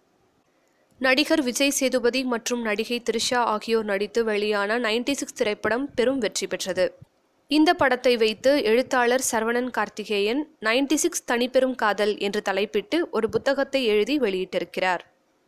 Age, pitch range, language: 20-39, 215-270 Hz, Tamil